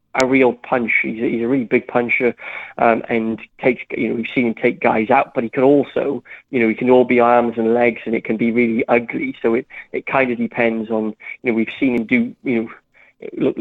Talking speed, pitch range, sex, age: 245 wpm, 115-125 Hz, male, 30-49